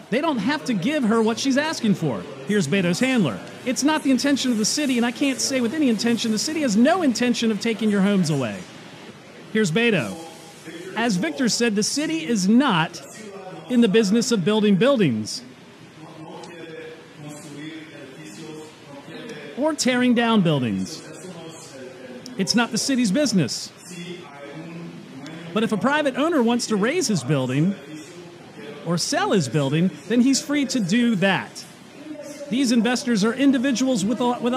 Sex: male